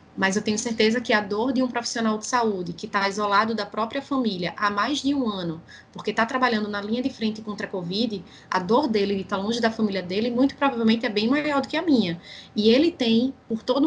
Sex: female